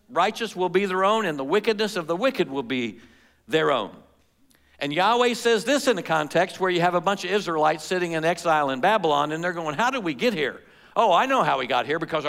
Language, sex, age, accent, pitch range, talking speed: English, male, 60-79, American, 135-180 Hz, 245 wpm